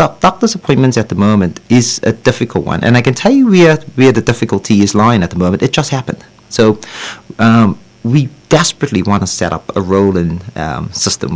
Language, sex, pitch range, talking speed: English, male, 100-125 Hz, 200 wpm